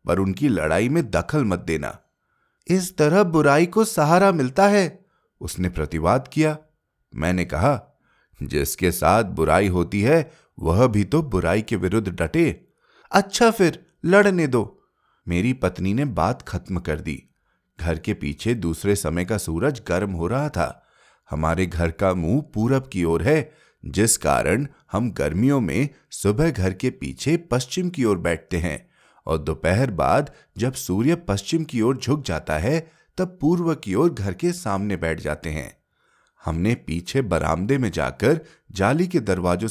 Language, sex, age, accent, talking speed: Hindi, male, 30-49, native, 155 wpm